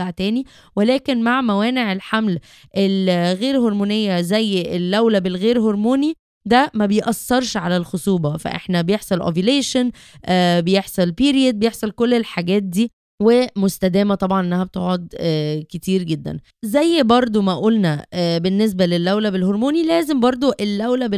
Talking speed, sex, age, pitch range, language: 115 wpm, female, 20-39, 200-260 Hz, Arabic